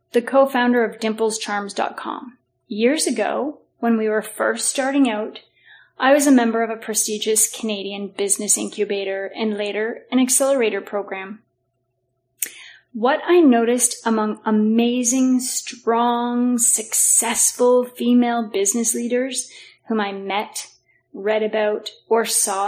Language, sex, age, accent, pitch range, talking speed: English, female, 30-49, American, 210-260 Hz, 115 wpm